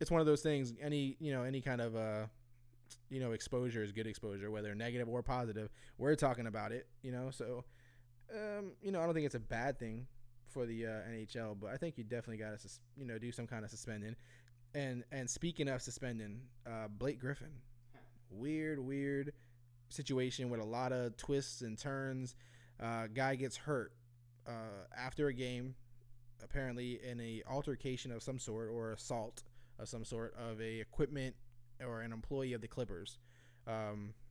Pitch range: 115-130 Hz